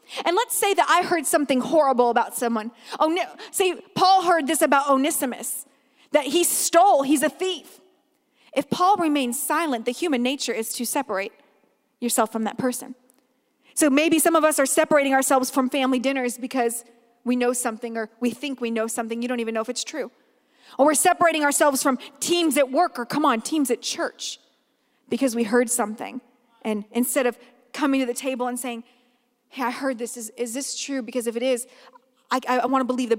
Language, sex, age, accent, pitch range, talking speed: English, female, 40-59, American, 245-295 Hz, 200 wpm